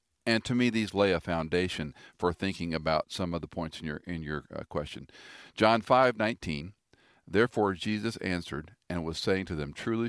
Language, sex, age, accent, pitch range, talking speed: English, male, 50-69, American, 80-105 Hz, 190 wpm